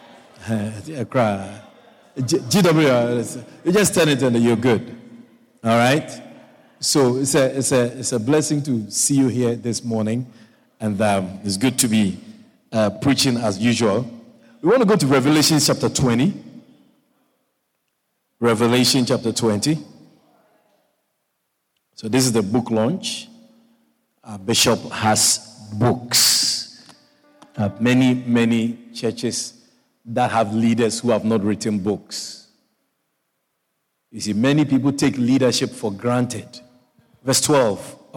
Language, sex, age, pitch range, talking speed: English, male, 50-69, 115-140 Hz, 110 wpm